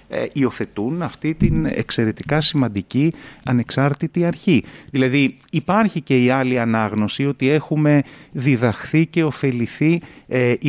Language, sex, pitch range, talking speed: Greek, male, 100-145 Hz, 105 wpm